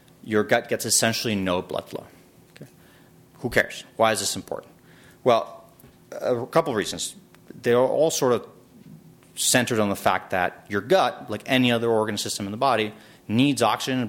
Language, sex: English, male